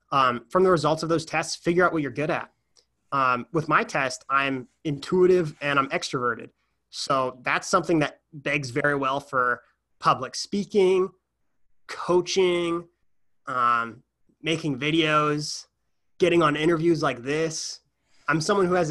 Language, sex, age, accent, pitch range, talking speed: English, male, 20-39, American, 130-165 Hz, 145 wpm